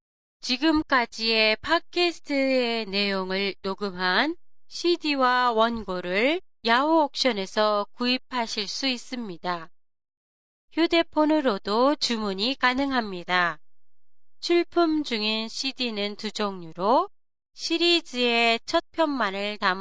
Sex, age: female, 30-49